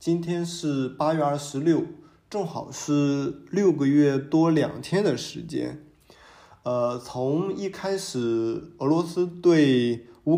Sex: male